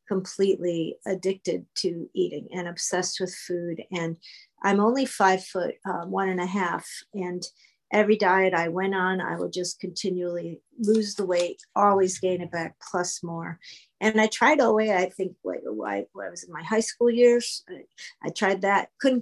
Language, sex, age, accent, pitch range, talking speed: English, female, 50-69, American, 175-210 Hz, 175 wpm